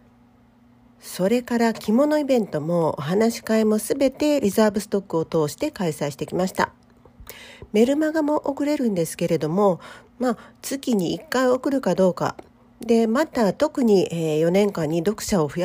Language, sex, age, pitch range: Japanese, female, 40-59, 170-245 Hz